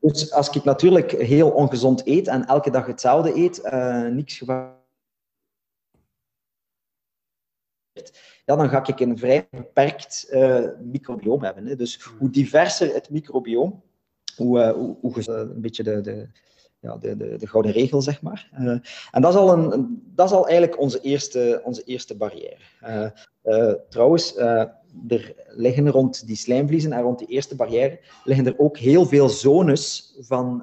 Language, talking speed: Dutch, 145 wpm